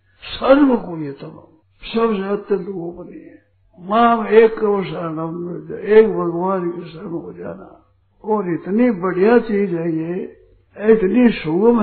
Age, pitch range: 60-79, 185-235 Hz